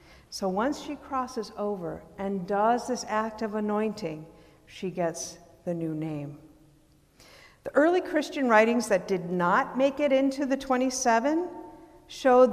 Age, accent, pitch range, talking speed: 50-69, American, 180-240 Hz, 140 wpm